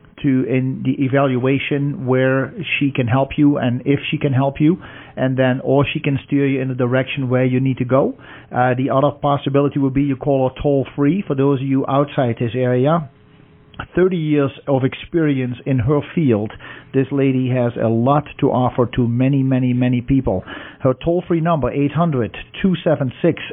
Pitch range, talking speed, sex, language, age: 125-145 Hz, 185 wpm, male, English, 50-69